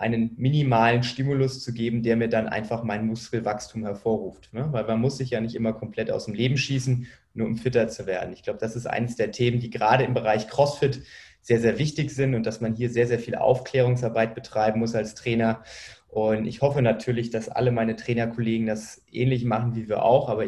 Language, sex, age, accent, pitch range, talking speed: German, male, 20-39, German, 110-125 Hz, 210 wpm